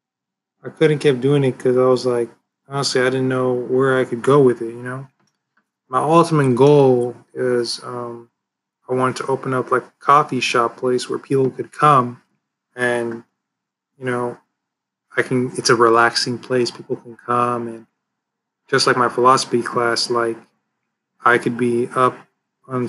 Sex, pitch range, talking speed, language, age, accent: male, 120-135 Hz, 170 wpm, English, 20-39, American